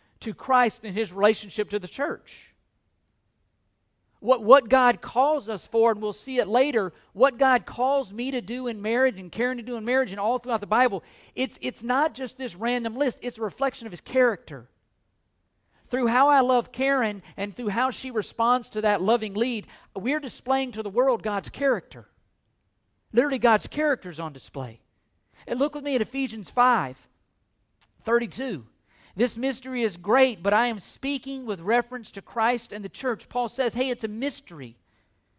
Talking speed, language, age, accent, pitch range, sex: 180 wpm, English, 50-69, American, 185-255 Hz, male